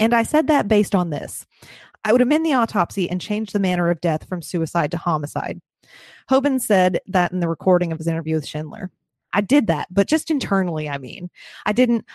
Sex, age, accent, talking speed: female, 30-49, American, 210 wpm